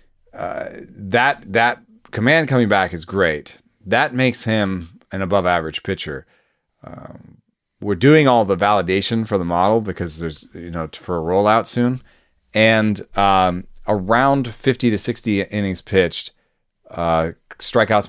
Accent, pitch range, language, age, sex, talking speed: American, 85-115 Hz, English, 30-49, male, 140 wpm